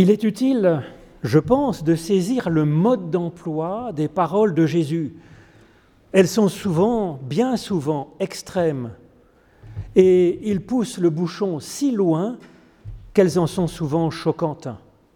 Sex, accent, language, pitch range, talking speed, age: male, French, French, 155-205 Hz, 125 wpm, 40-59